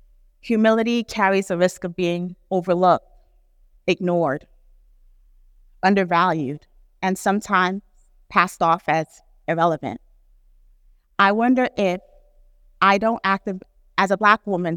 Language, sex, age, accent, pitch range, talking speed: English, female, 30-49, American, 155-190 Hz, 100 wpm